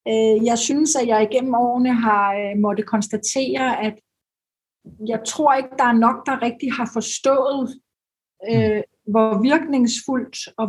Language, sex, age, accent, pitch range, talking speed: Danish, female, 40-59, native, 215-255 Hz, 130 wpm